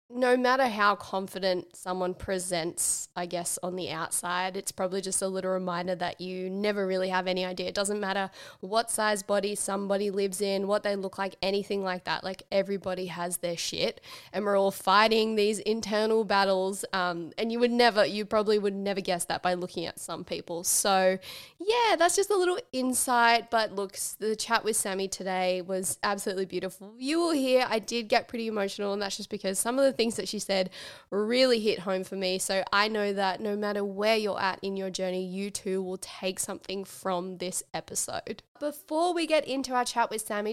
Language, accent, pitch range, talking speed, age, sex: English, Australian, 185-225 Hz, 205 wpm, 20-39, female